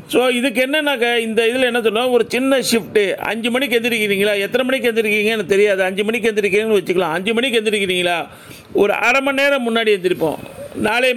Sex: male